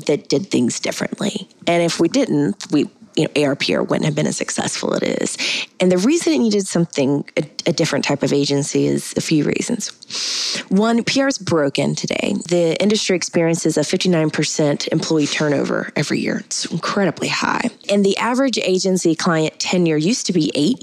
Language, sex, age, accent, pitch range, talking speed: English, female, 20-39, American, 145-185 Hz, 180 wpm